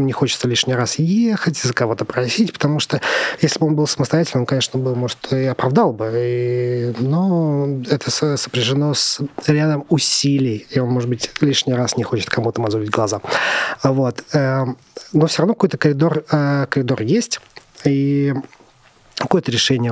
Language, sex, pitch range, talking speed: Russian, male, 120-150 Hz, 155 wpm